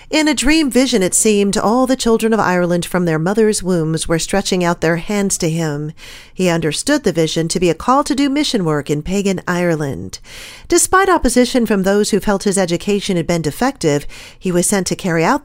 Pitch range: 175-240 Hz